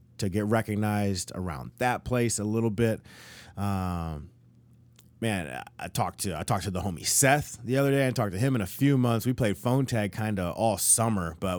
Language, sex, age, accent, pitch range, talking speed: English, male, 30-49, American, 95-115 Hz, 205 wpm